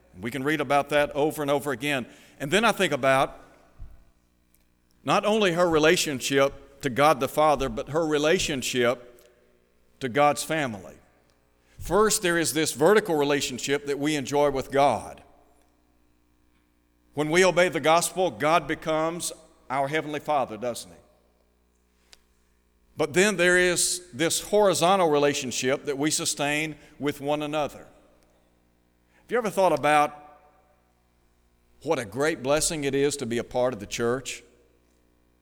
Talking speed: 140 wpm